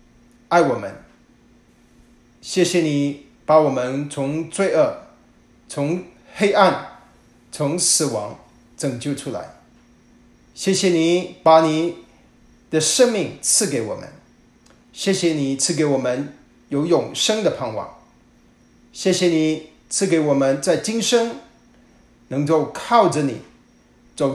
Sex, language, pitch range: male, Chinese, 145-180 Hz